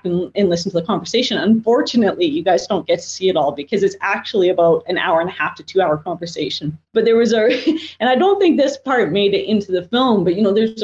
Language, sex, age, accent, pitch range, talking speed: English, female, 30-49, American, 175-225 Hz, 260 wpm